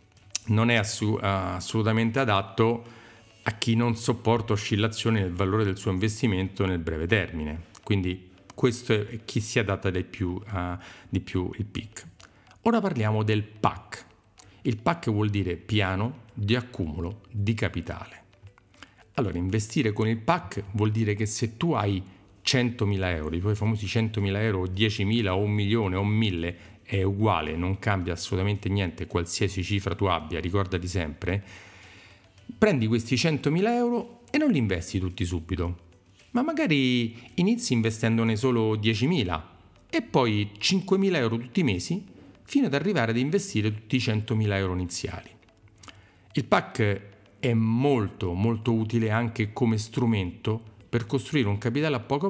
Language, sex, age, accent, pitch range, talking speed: Italian, male, 40-59, native, 95-120 Hz, 150 wpm